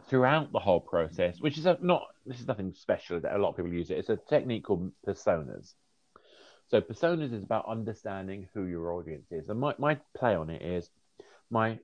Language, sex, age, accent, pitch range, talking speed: English, male, 30-49, British, 85-120 Hz, 200 wpm